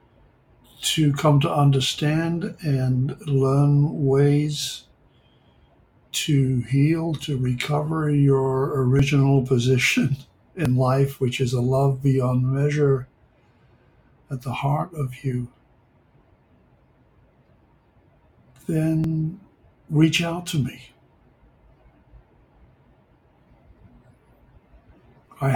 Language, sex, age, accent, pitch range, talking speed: English, male, 60-79, American, 125-140 Hz, 75 wpm